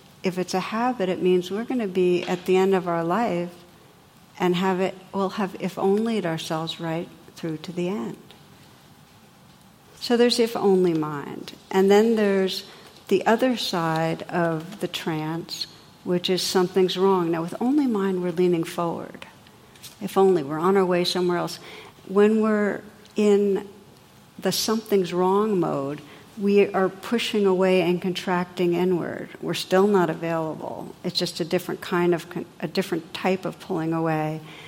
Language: English